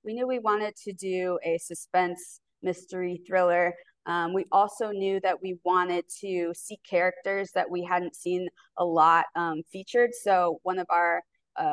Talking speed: 170 wpm